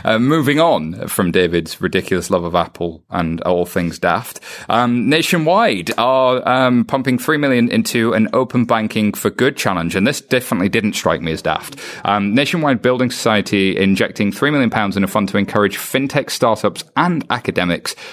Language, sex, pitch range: English, male, 95-130 Hz